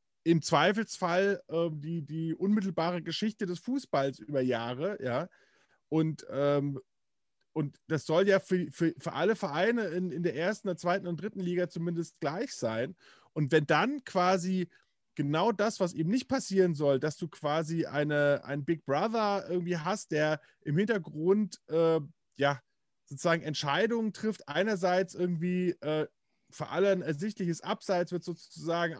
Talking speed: 150 wpm